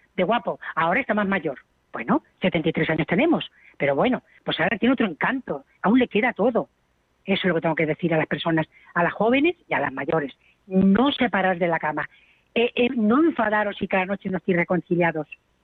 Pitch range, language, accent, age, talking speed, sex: 165-230 Hz, Spanish, Spanish, 40-59, 205 wpm, female